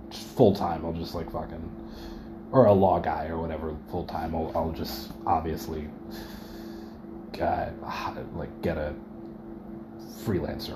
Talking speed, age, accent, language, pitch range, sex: 115 wpm, 20-39, American, English, 90-110 Hz, male